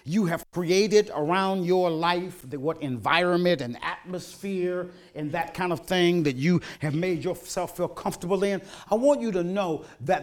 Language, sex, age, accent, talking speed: English, male, 40-59, American, 170 wpm